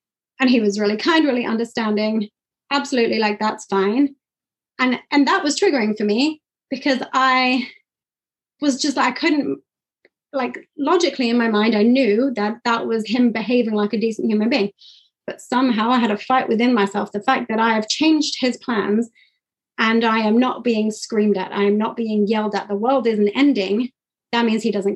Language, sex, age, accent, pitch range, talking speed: English, female, 30-49, British, 205-260 Hz, 190 wpm